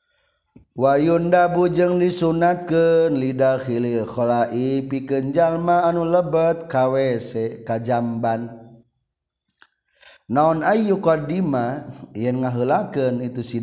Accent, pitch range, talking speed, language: native, 120-165 Hz, 95 wpm, Indonesian